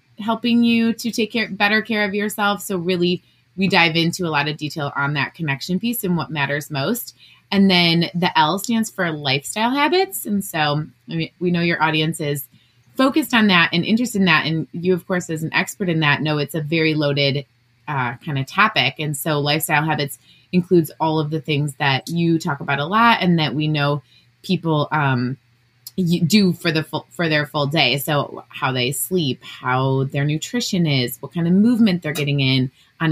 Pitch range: 140-180 Hz